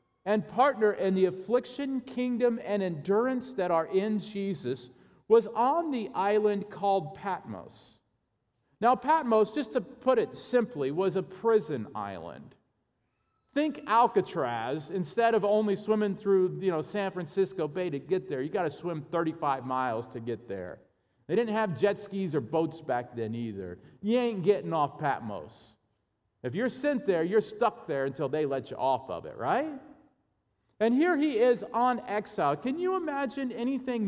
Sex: male